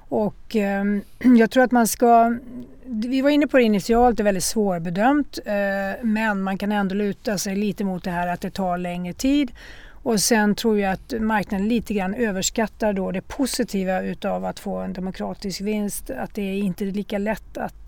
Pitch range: 190-230 Hz